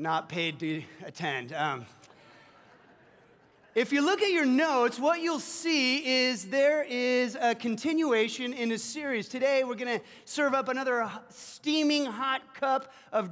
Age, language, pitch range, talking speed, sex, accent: 30-49, English, 200-255 Hz, 150 wpm, male, American